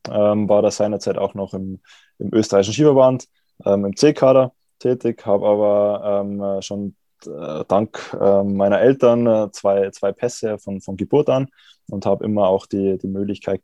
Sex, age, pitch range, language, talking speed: male, 20-39, 100-110 Hz, German, 165 wpm